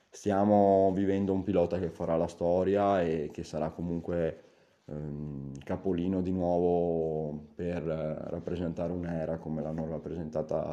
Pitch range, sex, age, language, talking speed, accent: 80-95 Hz, male, 20-39, Italian, 135 wpm, native